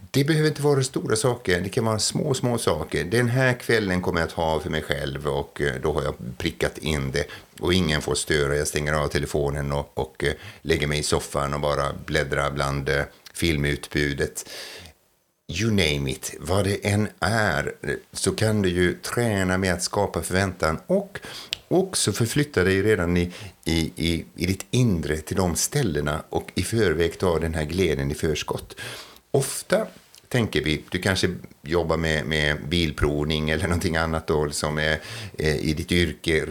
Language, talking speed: Swedish, 175 wpm